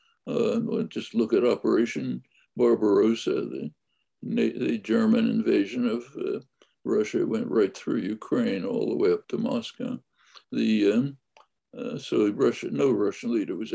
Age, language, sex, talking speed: 60-79, Urdu, male, 140 wpm